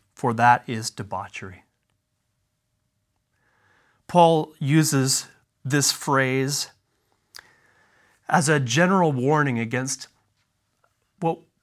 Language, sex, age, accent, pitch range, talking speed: English, male, 30-49, American, 120-155 Hz, 70 wpm